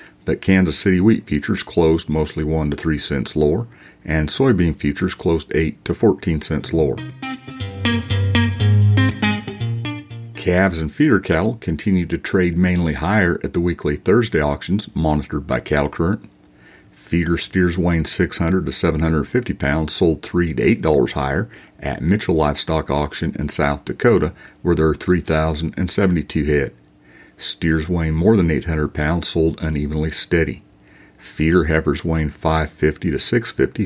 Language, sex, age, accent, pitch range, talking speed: English, male, 50-69, American, 75-90 Hz, 135 wpm